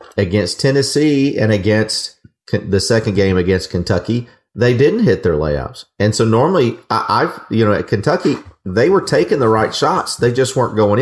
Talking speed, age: 180 wpm, 40-59